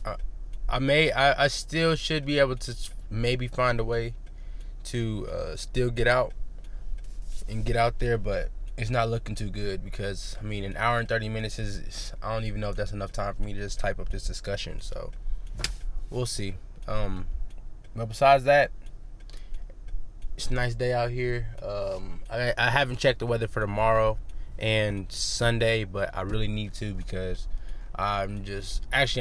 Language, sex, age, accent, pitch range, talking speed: English, male, 20-39, American, 95-115 Hz, 180 wpm